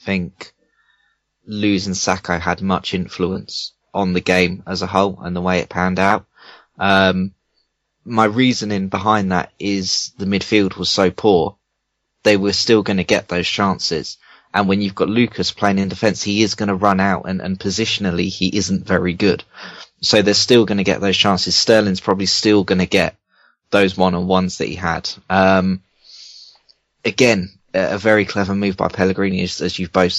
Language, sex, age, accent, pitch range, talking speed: English, male, 20-39, British, 95-100 Hz, 175 wpm